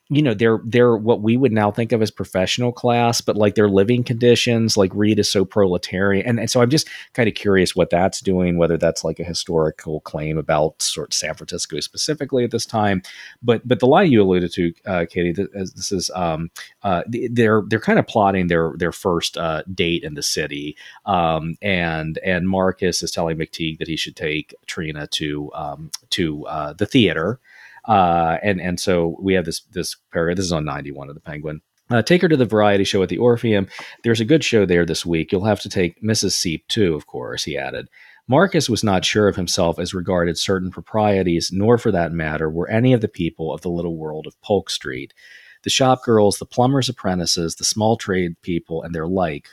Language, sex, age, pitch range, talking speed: English, male, 40-59, 85-110 Hz, 215 wpm